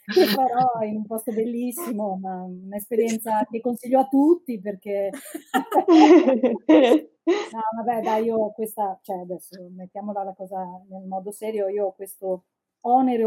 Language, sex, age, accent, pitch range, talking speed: Italian, female, 30-49, native, 185-225 Hz, 130 wpm